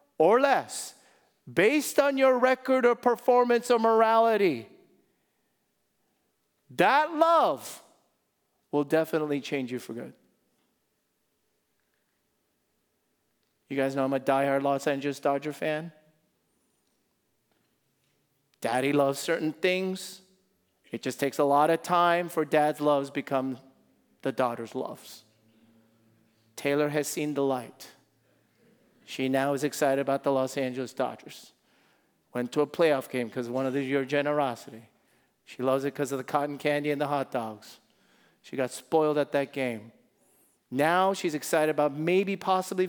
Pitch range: 135-225 Hz